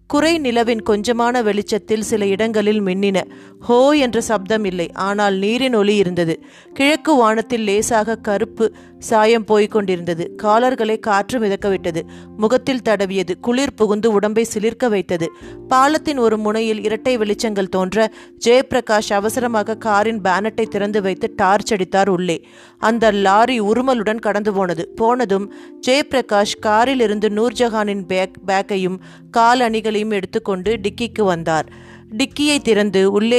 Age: 30-49